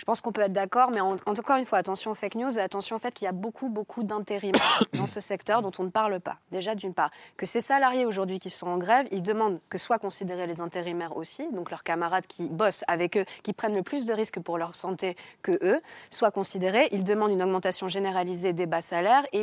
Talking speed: 245 wpm